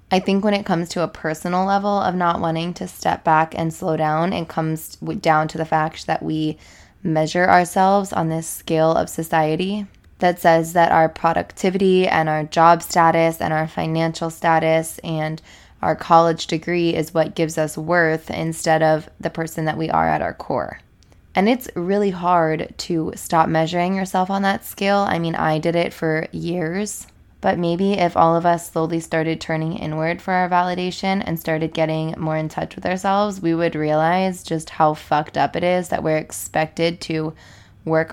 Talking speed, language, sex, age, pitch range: 185 wpm, English, female, 10-29, 160-180 Hz